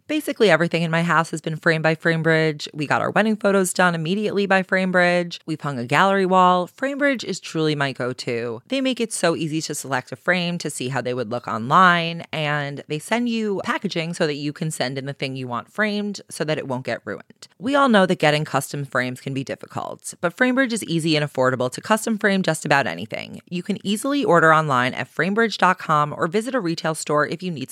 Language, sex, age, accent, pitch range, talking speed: English, female, 20-39, American, 145-205 Hz, 225 wpm